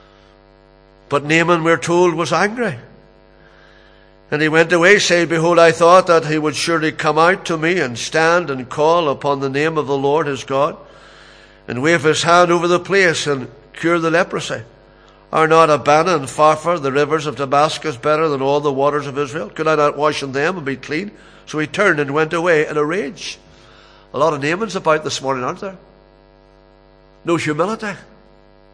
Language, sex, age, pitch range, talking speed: English, male, 60-79, 110-165 Hz, 190 wpm